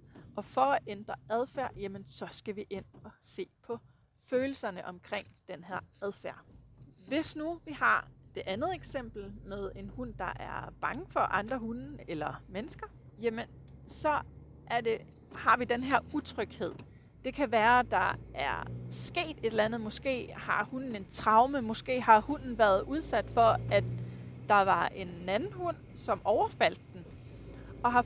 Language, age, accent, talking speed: Danish, 30-49, native, 160 wpm